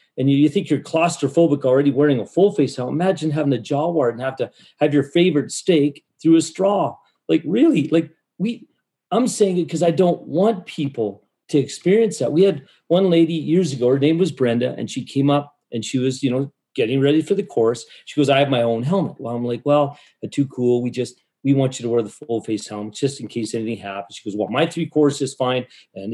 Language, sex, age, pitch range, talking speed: English, male, 40-59, 130-170 Hz, 235 wpm